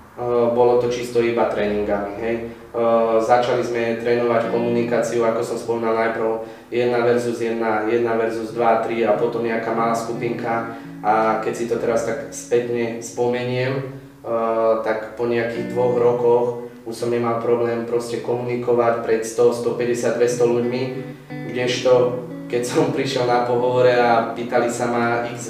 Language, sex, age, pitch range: Slovak, male, 20-39, 115-125 Hz